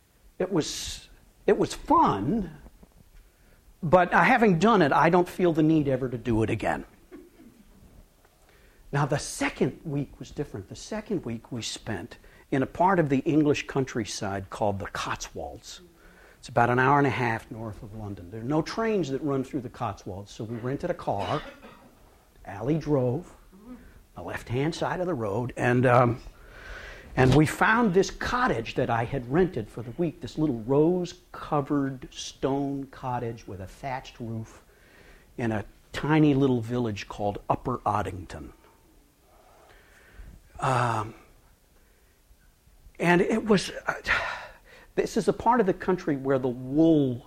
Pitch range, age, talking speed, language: 115-165 Hz, 60-79, 150 wpm, English